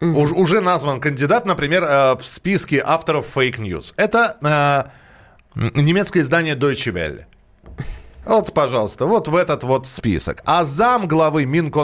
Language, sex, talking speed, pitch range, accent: Russian, male, 120 wpm, 115-160 Hz, native